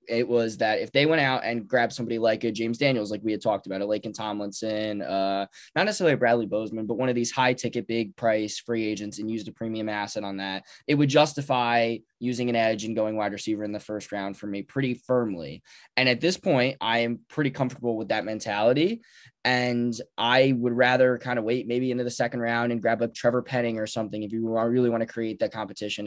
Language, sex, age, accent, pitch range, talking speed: English, male, 20-39, American, 110-130 Hz, 230 wpm